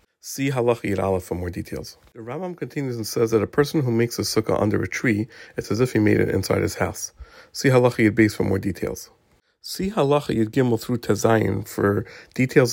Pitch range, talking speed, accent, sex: 100-120 Hz, 210 wpm, American, male